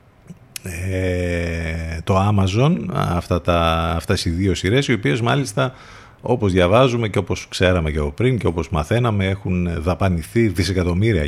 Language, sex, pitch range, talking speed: Greek, male, 90-115 Hz, 135 wpm